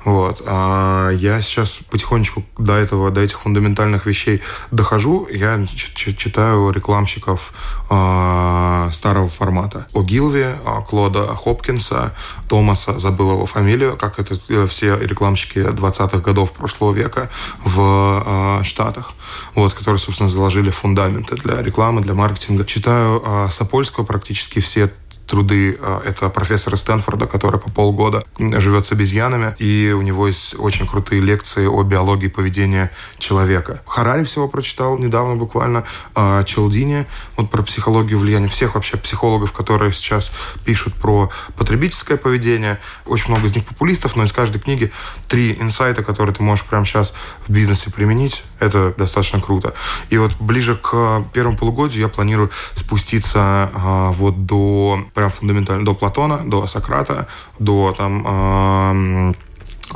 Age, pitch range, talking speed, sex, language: 20-39, 100-110 Hz, 125 wpm, male, Russian